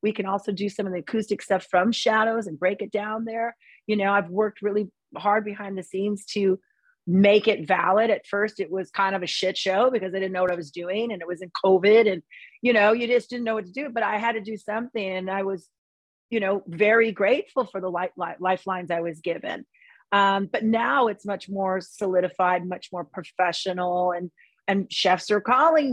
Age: 40-59